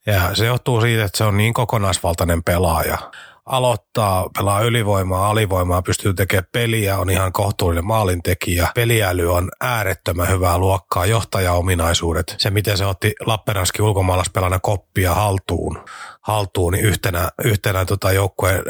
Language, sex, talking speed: Finnish, male, 125 wpm